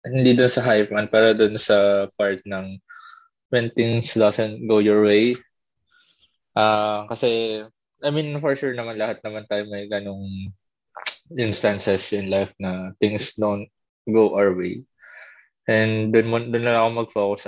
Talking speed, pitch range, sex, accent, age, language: 145 wpm, 105-130 Hz, male, native, 20-39, Filipino